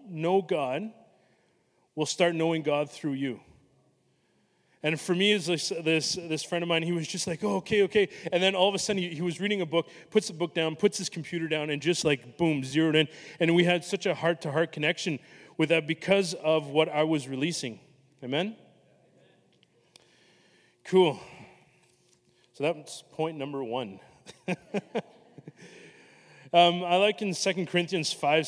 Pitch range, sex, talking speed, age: 150-180 Hz, male, 165 wpm, 30-49